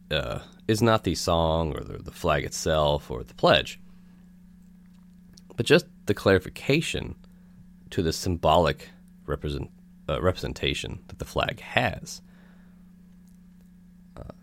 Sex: male